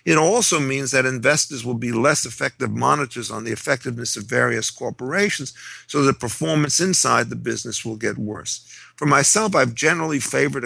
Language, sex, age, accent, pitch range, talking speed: English, male, 50-69, American, 120-145 Hz, 170 wpm